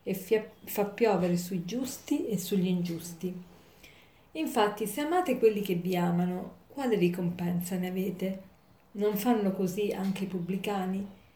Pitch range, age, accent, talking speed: 185-230 Hz, 40-59, native, 135 wpm